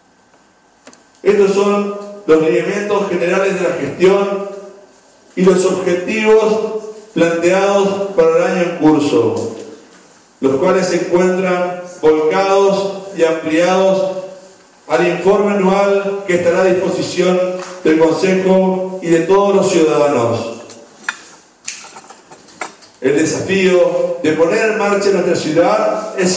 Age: 40-59